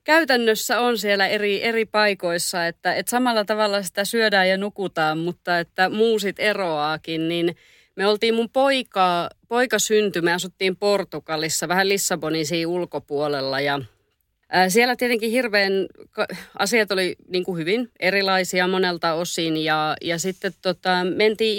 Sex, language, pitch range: female, Finnish, 165-215 Hz